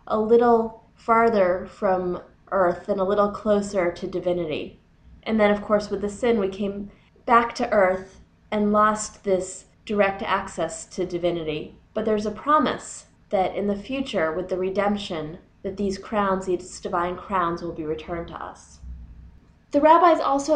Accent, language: American, English